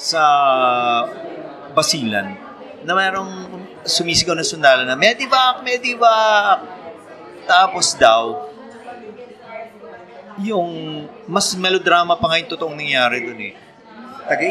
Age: 30-49